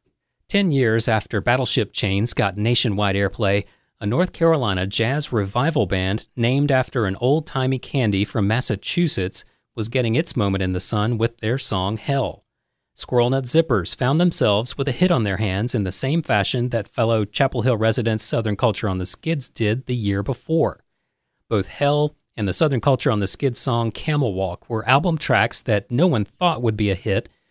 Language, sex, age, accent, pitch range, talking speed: English, male, 40-59, American, 105-135 Hz, 185 wpm